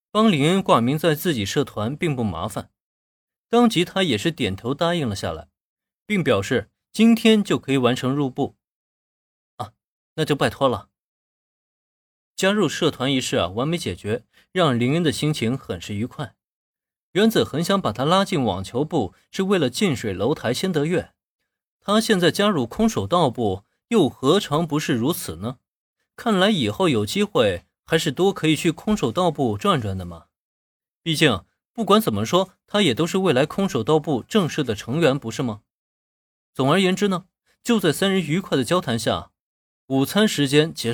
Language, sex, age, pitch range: Chinese, male, 20-39, 130-200 Hz